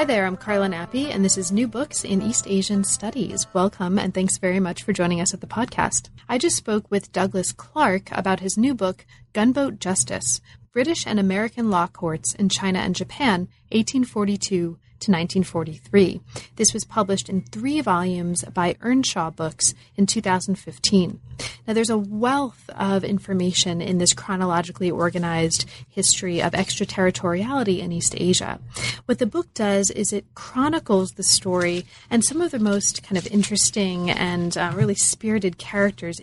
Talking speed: 160 wpm